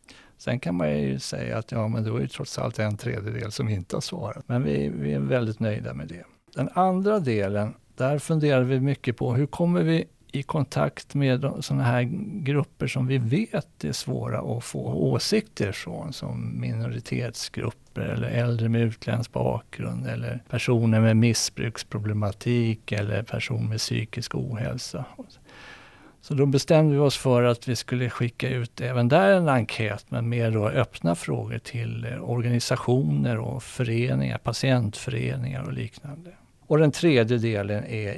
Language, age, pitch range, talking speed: Swedish, 50-69, 110-130 Hz, 160 wpm